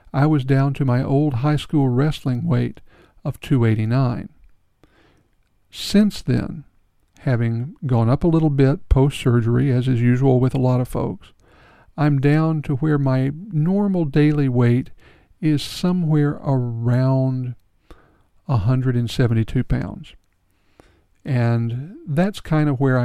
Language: English